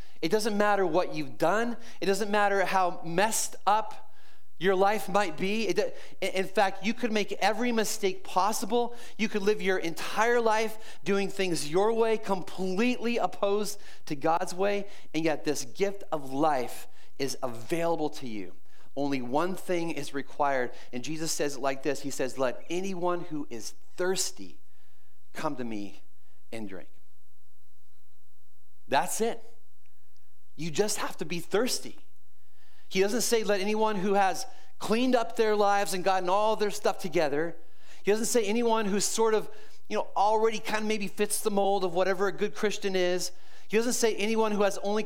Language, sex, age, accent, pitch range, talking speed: English, male, 30-49, American, 140-210 Hz, 170 wpm